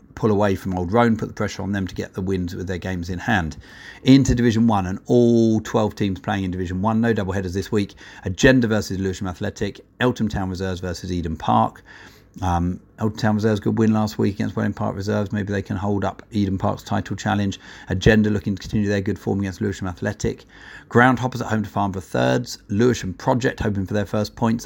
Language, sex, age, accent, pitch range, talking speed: English, male, 40-59, British, 95-110 Hz, 210 wpm